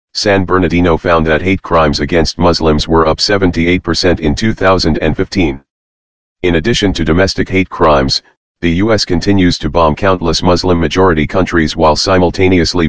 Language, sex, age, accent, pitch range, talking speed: English, male, 40-59, American, 80-95 Hz, 135 wpm